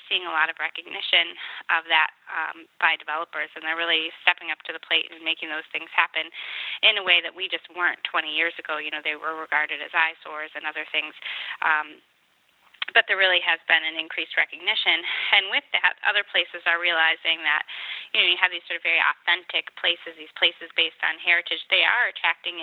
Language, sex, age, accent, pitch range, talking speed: English, female, 20-39, American, 160-180 Hz, 205 wpm